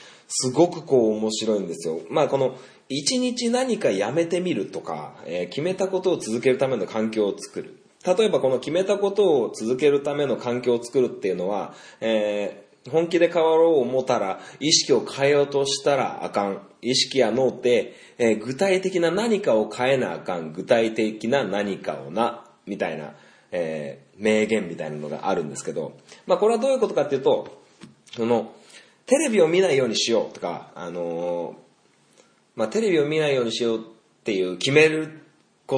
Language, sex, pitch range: Japanese, male, 110-180 Hz